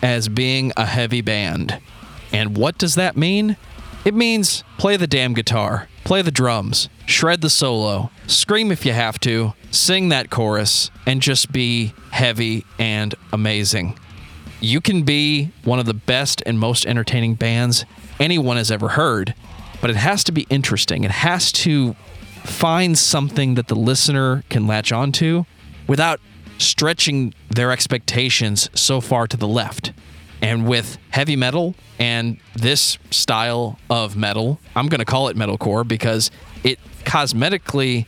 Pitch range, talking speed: 110-140 Hz, 150 wpm